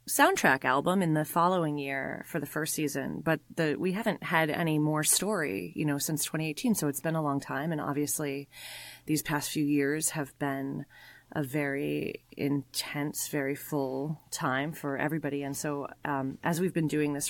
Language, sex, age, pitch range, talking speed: English, female, 30-49, 145-165 Hz, 180 wpm